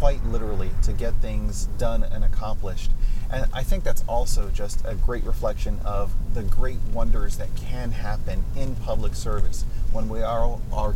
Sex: male